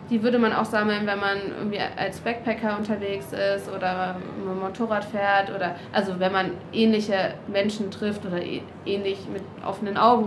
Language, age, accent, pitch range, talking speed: German, 20-39, German, 195-220 Hz, 170 wpm